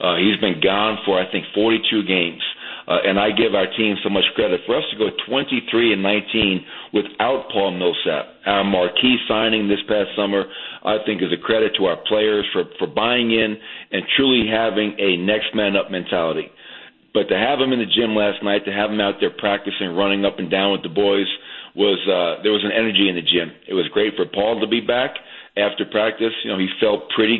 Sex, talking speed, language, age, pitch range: male, 220 wpm, English, 40-59, 100-115 Hz